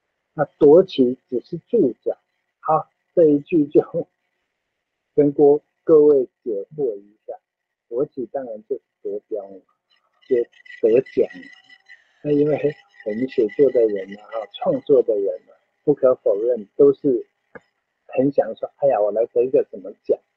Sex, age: male, 50-69